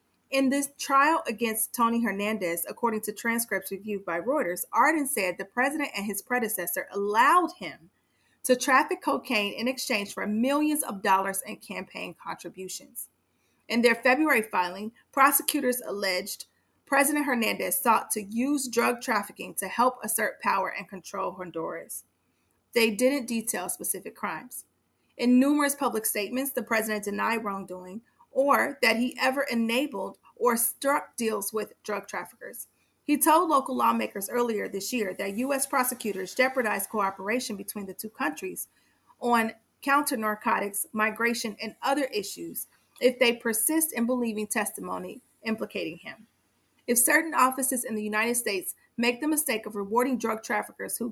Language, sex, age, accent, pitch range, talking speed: English, female, 40-59, American, 205-260 Hz, 145 wpm